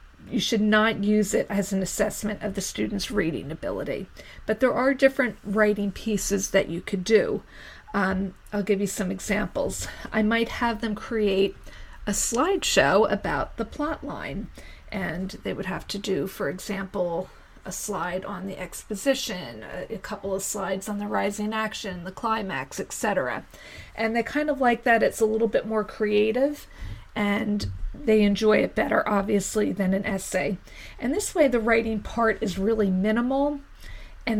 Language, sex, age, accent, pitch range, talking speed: English, female, 40-59, American, 200-225 Hz, 165 wpm